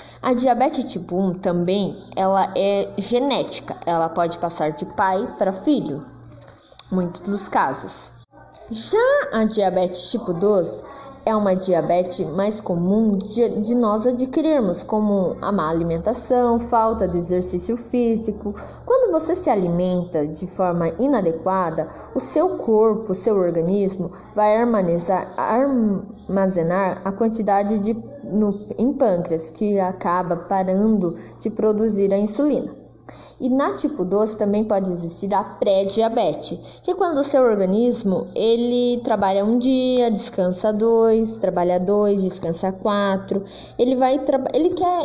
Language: Portuguese